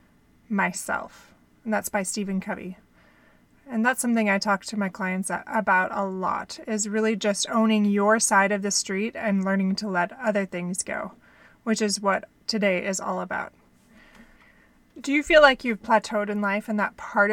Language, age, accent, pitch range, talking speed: English, 20-39, American, 195-220 Hz, 175 wpm